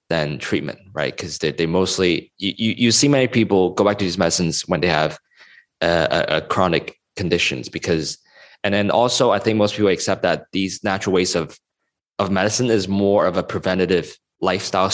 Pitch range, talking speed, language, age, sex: 90-110 Hz, 190 wpm, English, 20-39, male